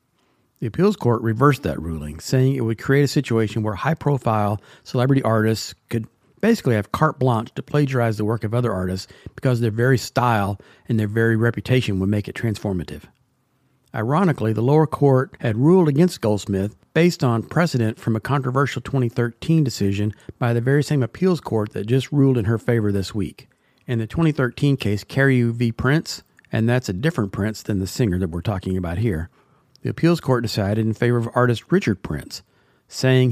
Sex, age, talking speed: male, 50-69, 180 wpm